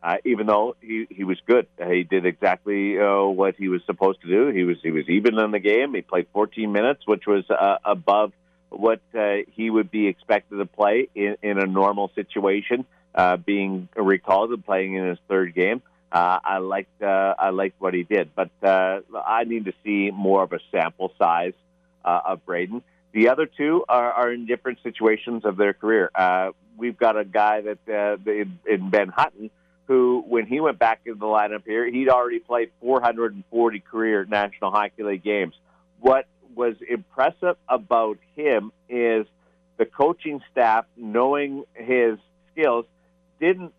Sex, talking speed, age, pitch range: male, 180 wpm, 50-69, 100-125 Hz